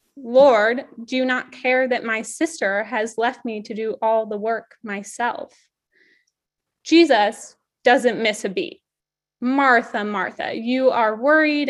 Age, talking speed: 20-39, 140 wpm